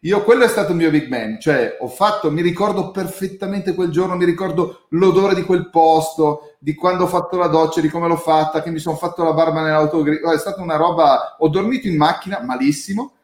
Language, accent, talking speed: Italian, native, 215 wpm